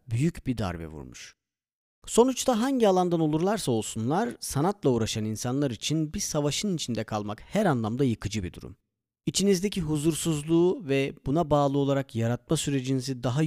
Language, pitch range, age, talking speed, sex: Turkish, 115-165 Hz, 40-59, 140 wpm, male